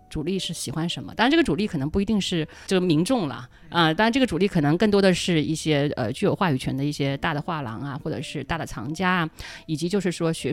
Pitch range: 145-195 Hz